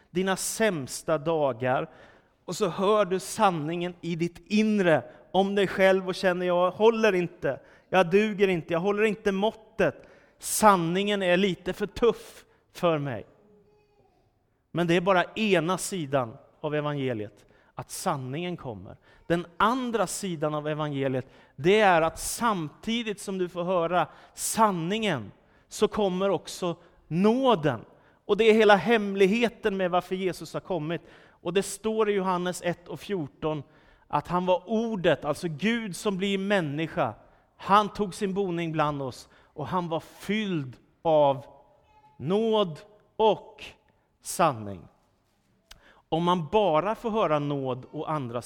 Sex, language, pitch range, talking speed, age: male, Swedish, 155-205 Hz, 135 wpm, 30-49